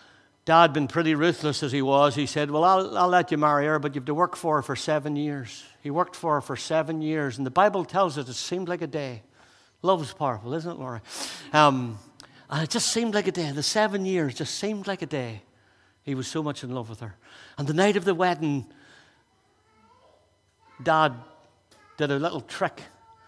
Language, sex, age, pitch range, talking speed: English, male, 60-79, 140-170 Hz, 215 wpm